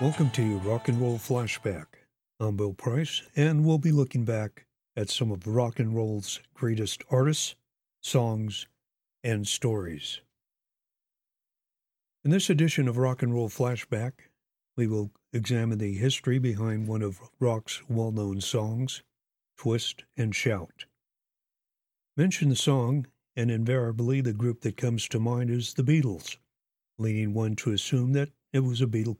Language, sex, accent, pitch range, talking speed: English, male, American, 115-135 Hz, 145 wpm